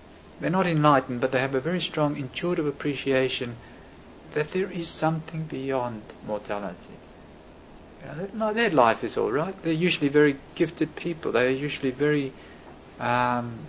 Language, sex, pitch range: English, male, 115-160 Hz